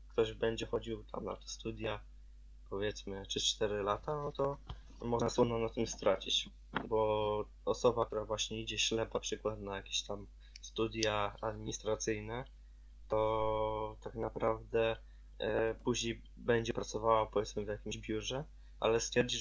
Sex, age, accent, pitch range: male, 20-39, native, 100-115 Hz